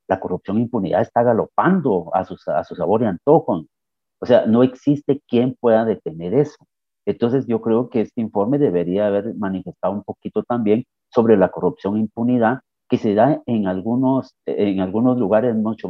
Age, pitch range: 50-69, 105-130 Hz